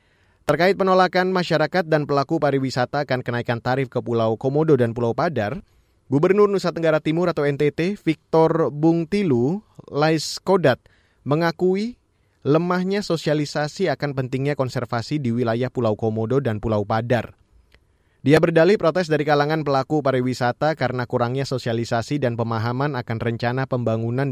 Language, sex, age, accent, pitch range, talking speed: Indonesian, male, 20-39, native, 120-160 Hz, 135 wpm